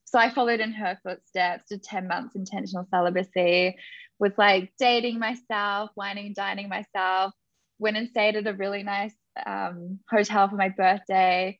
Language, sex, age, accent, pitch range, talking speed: English, female, 10-29, Australian, 190-240 Hz, 155 wpm